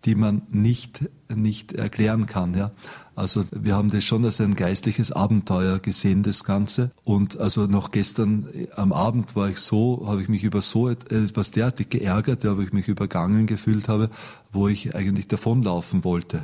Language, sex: German, male